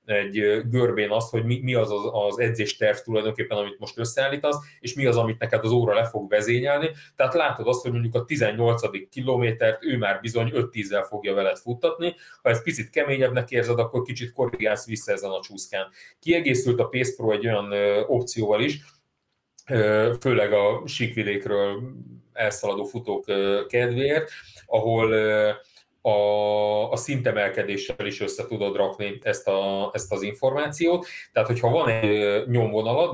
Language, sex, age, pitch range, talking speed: Hungarian, male, 30-49, 105-130 Hz, 145 wpm